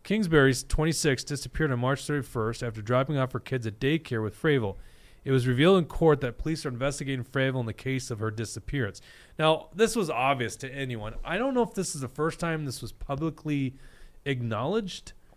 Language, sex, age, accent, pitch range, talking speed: English, male, 30-49, American, 125-175 Hz, 195 wpm